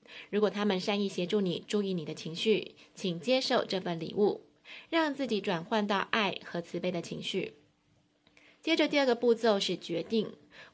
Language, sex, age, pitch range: Chinese, female, 20-39, 180-230 Hz